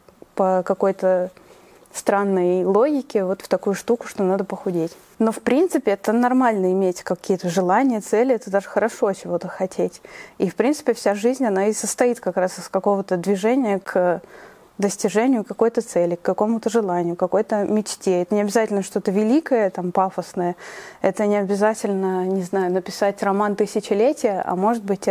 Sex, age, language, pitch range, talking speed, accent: female, 20-39, Russian, 190-220 Hz, 155 wpm, native